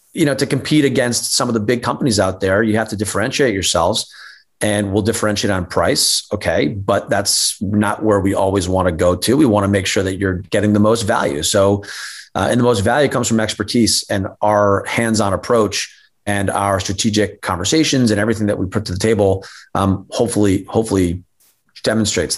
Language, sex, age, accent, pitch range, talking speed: English, male, 30-49, American, 100-115 Hz, 195 wpm